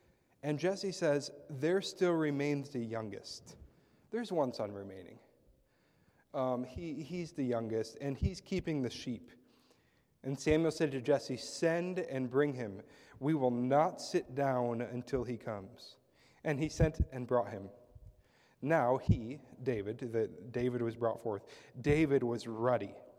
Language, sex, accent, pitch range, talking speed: English, male, American, 120-145 Hz, 145 wpm